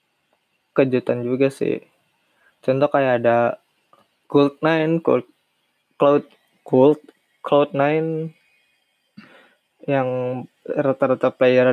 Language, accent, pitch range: Indonesian, native, 125-150 Hz